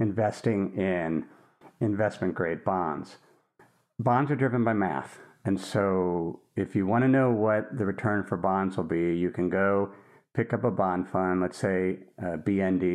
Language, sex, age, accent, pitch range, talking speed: English, male, 50-69, American, 95-115 Hz, 160 wpm